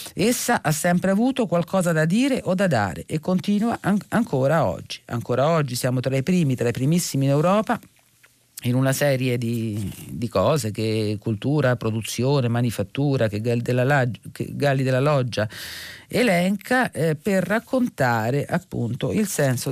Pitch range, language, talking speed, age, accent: 130-180 Hz, Italian, 145 wpm, 40-59, native